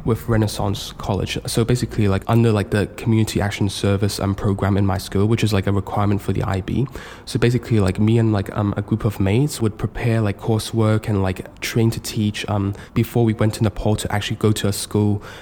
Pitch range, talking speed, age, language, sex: 100-115 Hz, 220 wpm, 10-29, English, male